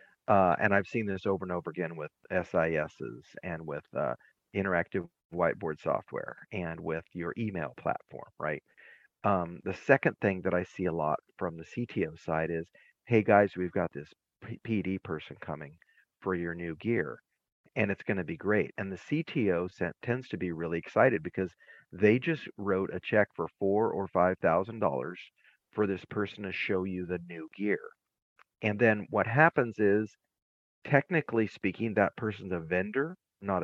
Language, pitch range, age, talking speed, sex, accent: English, 90-110 Hz, 40-59, 170 wpm, male, American